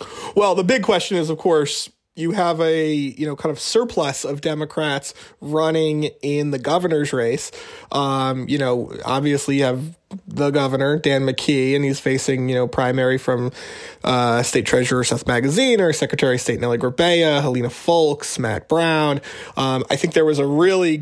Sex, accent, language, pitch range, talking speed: male, American, English, 130-155 Hz, 175 wpm